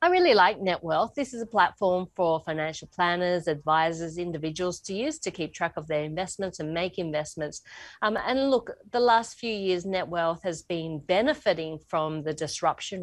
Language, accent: English, Australian